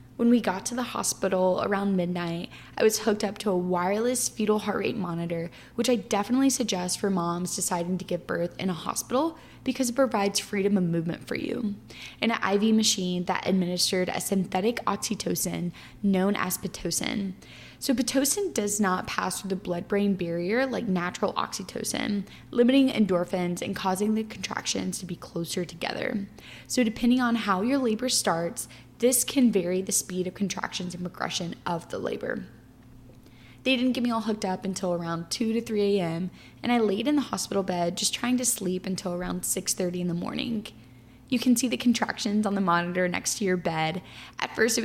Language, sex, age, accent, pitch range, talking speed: English, female, 10-29, American, 180-225 Hz, 185 wpm